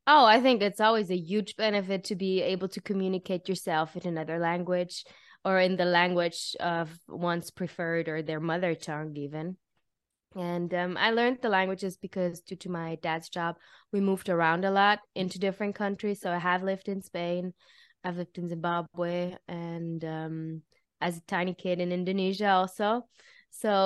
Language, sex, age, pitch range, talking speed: English, female, 20-39, 170-205 Hz, 175 wpm